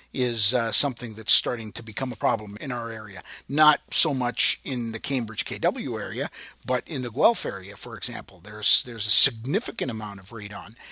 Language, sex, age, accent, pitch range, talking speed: English, male, 50-69, American, 115-155 Hz, 185 wpm